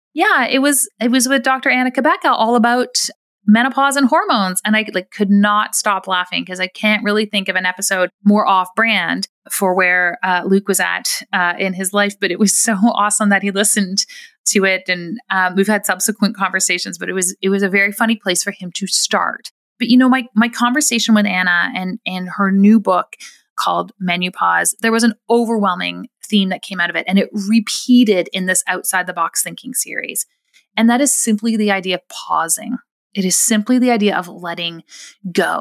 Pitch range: 185-235 Hz